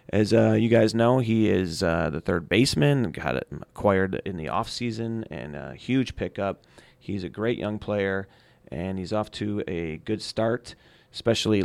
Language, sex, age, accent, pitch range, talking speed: English, male, 30-49, American, 100-120 Hz, 170 wpm